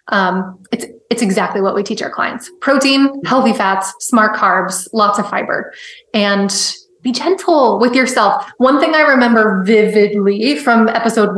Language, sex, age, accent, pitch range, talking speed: English, female, 20-39, American, 210-275 Hz, 155 wpm